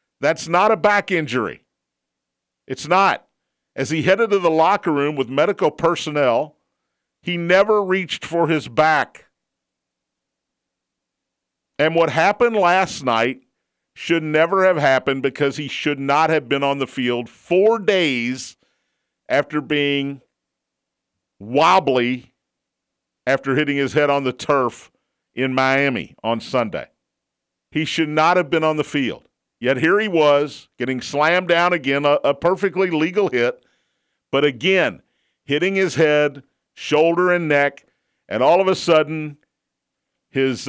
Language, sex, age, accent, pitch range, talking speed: English, male, 50-69, American, 135-165 Hz, 135 wpm